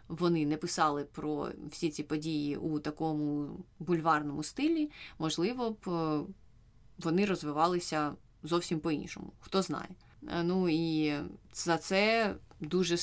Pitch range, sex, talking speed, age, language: 155-185 Hz, female, 110 wpm, 20-39, Ukrainian